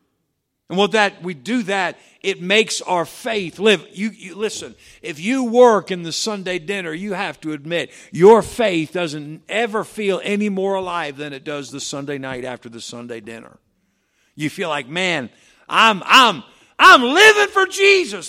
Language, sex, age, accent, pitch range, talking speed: English, male, 50-69, American, 155-210 Hz, 165 wpm